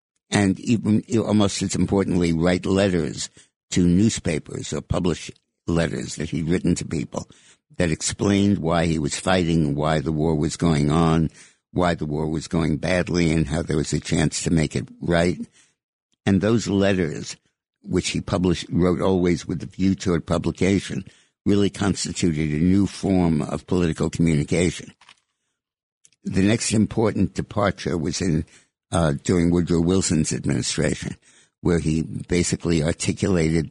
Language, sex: English, male